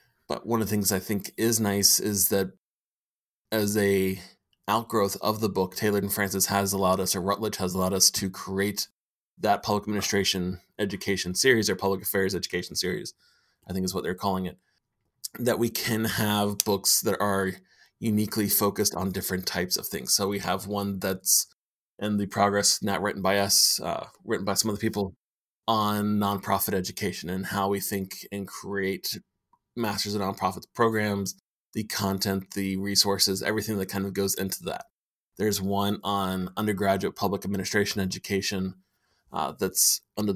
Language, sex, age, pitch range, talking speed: English, male, 20-39, 95-105 Hz, 170 wpm